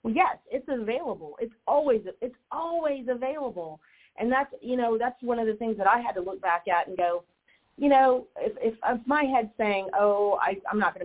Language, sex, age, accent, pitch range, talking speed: English, female, 40-59, American, 175-255 Hz, 210 wpm